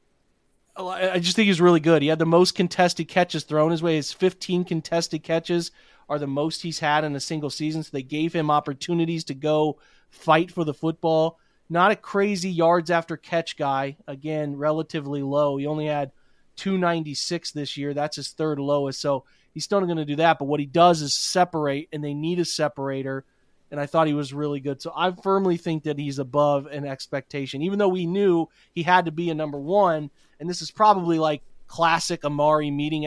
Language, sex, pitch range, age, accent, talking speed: English, male, 145-170 Hz, 30-49, American, 200 wpm